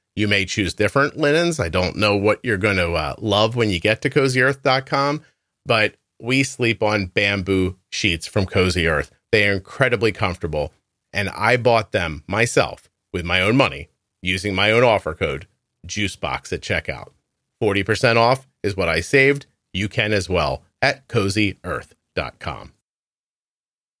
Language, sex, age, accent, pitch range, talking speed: English, male, 40-59, American, 100-135 Hz, 155 wpm